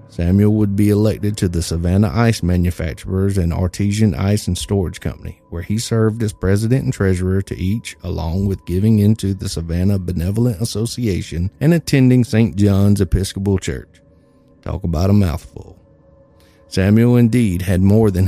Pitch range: 90-115 Hz